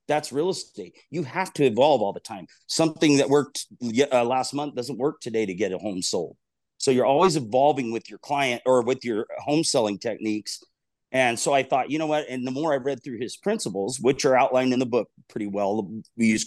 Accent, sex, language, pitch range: American, male, English, 120-150 Hz